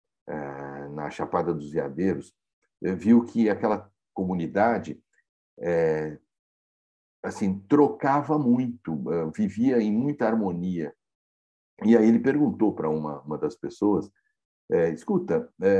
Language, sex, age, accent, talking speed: Portuguese, male, 60-79, Brazilian, 95 wpm